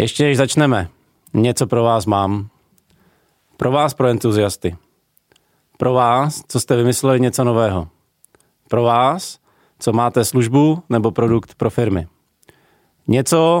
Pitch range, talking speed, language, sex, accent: 110-135 Hz, 125 wpm, Czech, male, native